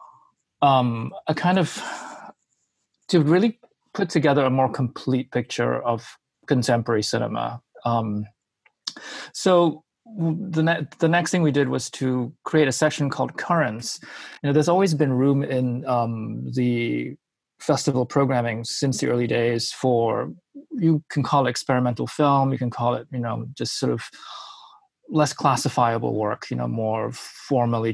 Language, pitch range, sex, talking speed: English, 115-145 Hz, male, 150 wpm